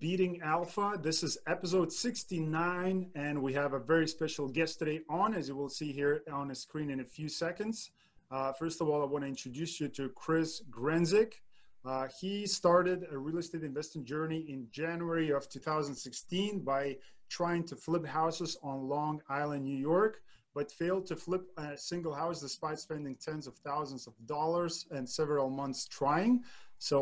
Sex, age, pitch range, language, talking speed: male, 30-49, 140-170 Hz, English, 175 wpm